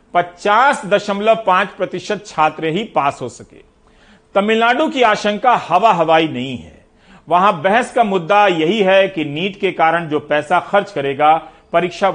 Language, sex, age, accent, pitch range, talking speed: Hindi, male, 40-59, native, 160-220 Hz, 140 wpm